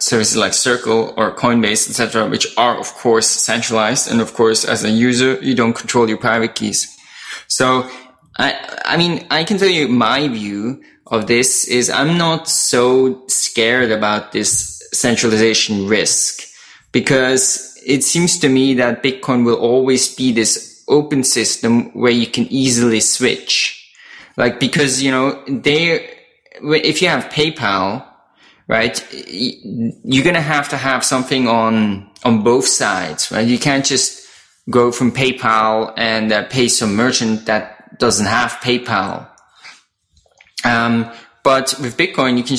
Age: 20-39